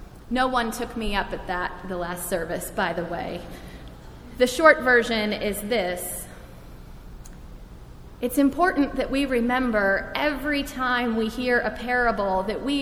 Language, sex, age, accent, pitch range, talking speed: English, female, 30-49, American, 190-260 Hz, 145 wpm